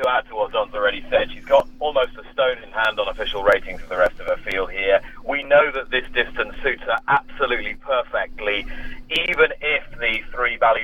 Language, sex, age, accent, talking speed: English, male, 40-59, British, 210 wpm